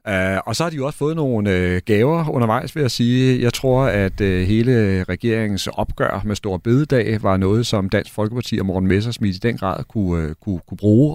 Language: Danish